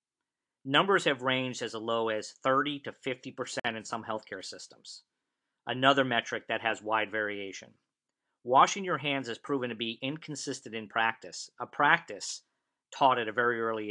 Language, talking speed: English, 160 wpm